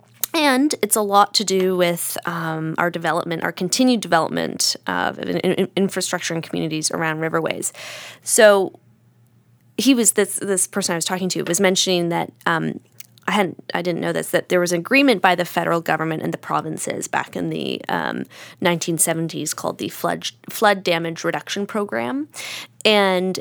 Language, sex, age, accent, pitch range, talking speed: English, female, 10-29, American, 165-195 Hz, 175 wpm